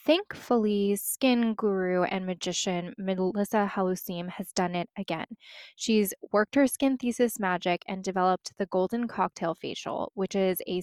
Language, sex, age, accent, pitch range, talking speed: English, female, 10-29, American, 185-235 Hz, 145 wpm